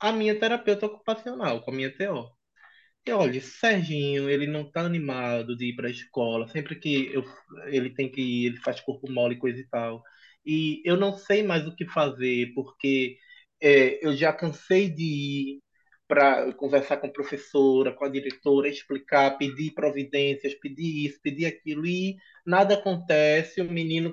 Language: Portuguese